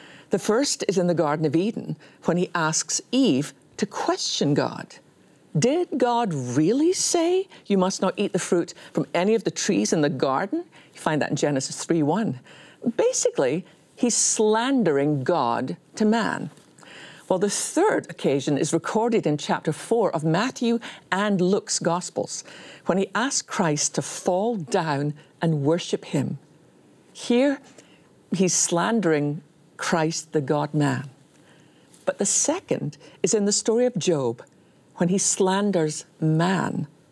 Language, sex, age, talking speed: English, female, 50-69, 140 wpm